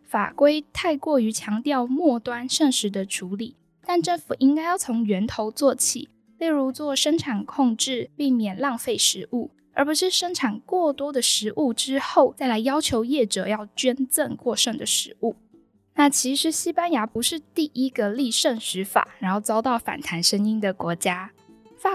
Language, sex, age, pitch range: Chinese, female, 10-29, 225-290 Hz